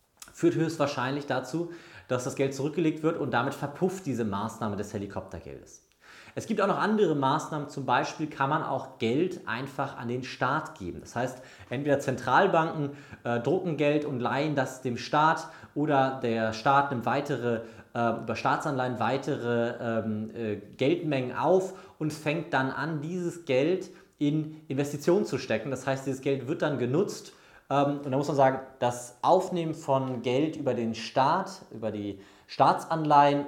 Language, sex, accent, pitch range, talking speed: German, male, German, 120-155 Hz, 160 wpm